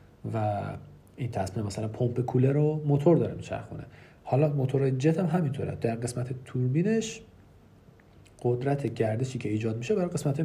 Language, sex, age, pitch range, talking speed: Persian, male, 40-59, 110-140 Hz, 145 wpm